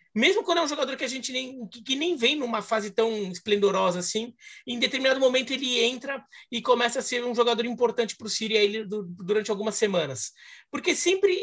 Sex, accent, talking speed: male, Brazilian, 195 wpm